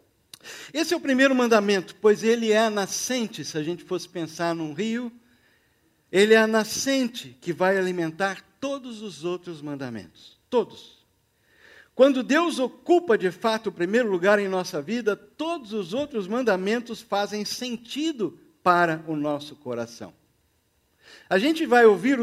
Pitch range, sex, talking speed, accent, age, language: 145-220 Hz, male, 145 wpm, Brazilian, 60-79, Portuguese